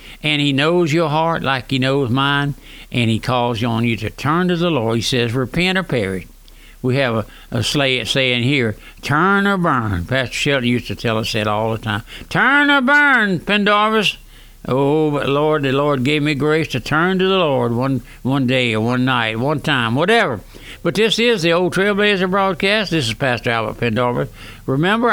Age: 60-79